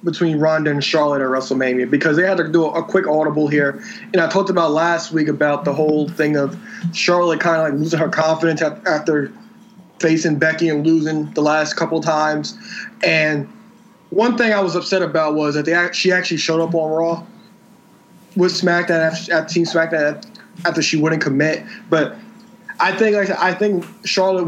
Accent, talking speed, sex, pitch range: American, 190 wpm, male, 155-185 Hz